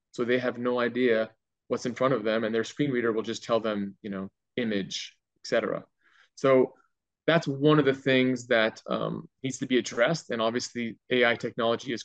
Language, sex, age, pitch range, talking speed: English, male, 20-39, 110-130 Hz, 195 wpm